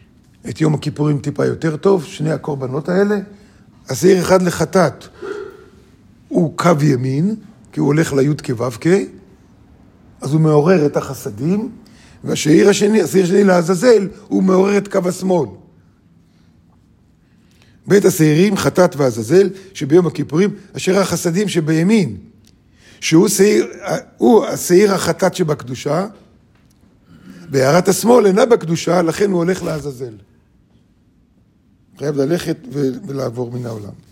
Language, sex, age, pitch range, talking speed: Hebrew, male, 50-69, 140-185 Hz, 105 wpm